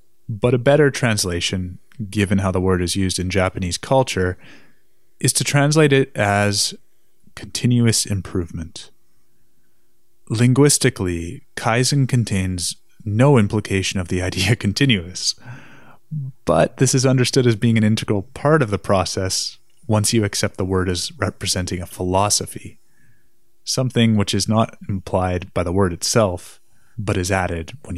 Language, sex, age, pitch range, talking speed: English, male, 20-39, 95-120 Hz, 135 wpm